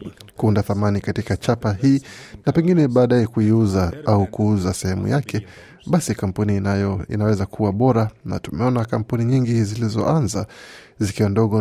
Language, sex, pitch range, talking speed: Swahili, male, 100-125 Hz, 130 wpm